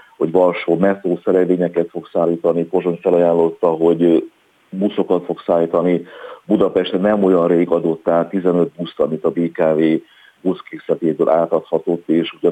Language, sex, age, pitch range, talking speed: Hungarian, male, 40-59, 85-95 Hz, 125 wpm